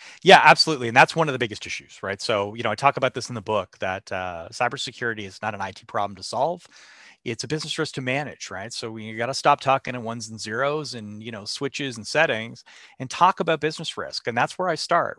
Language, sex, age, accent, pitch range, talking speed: English, male, 30-49, American, 115-150 Hz, 250 wpm